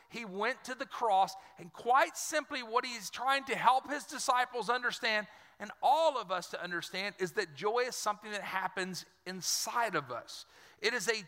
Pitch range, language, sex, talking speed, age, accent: 205-275 Hz, English, male, 185 wpm, 40-59, American